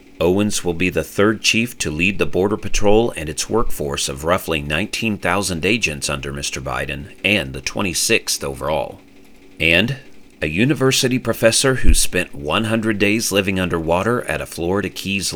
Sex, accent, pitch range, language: male, American, 80-105 Hz, English